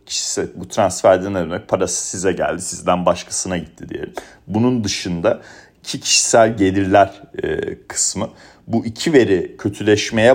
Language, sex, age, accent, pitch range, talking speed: Turkish, male, 40-59, native, 90-115 Hz, 115 wpm